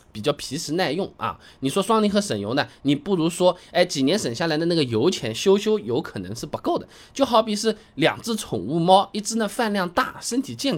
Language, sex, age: Chinese, male, 20-39